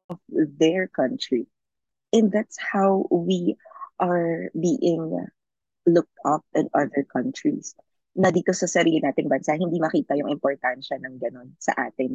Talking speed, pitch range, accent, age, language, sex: 140 wpm, 140-195 Hz, native, 20-39, Filipino, female